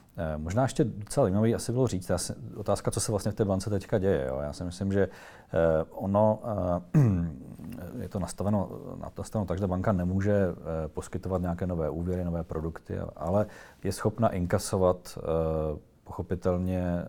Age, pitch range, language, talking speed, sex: 40-59, 85-100 Hz, Czech, 135 wpm, male